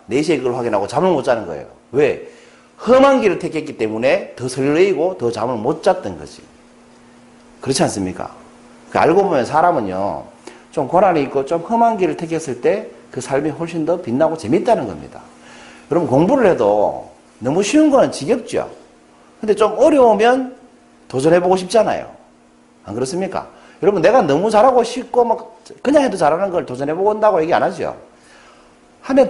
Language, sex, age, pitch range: Korean, male, 40-59, 150-240 Hz